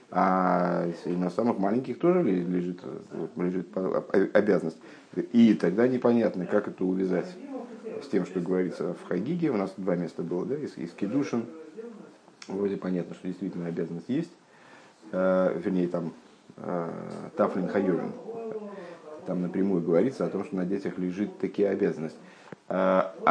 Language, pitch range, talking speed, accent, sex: Russian, 90-115 Hz, 130 wpm, native, male